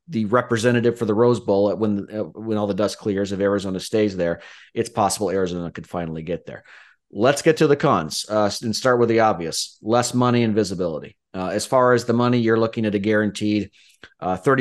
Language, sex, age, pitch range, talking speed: English, male, 30-49, 95-115 Hz, 205 wpm